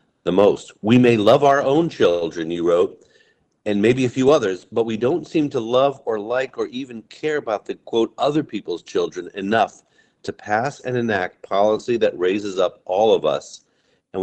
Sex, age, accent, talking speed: male, 50-69, American, 190 wpm